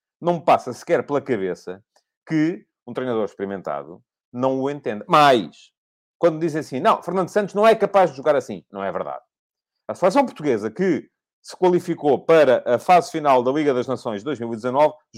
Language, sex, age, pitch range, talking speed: English, male, 40-59, 135-200 Hz, 180 wpm